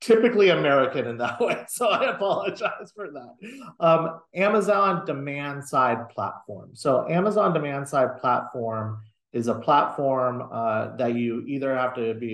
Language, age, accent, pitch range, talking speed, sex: English, 30-49, American, 110-130 Hz, 145 wpm, male